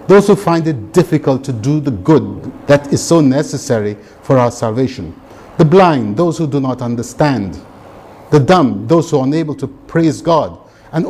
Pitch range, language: 105-150 Hz, English